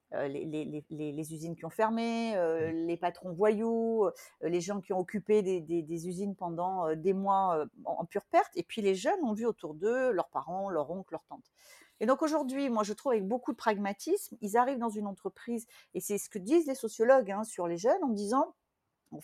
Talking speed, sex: 215 wpm, female